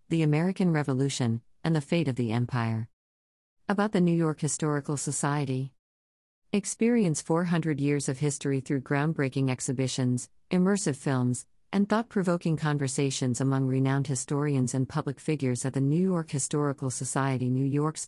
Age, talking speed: 40-59, 140 wpm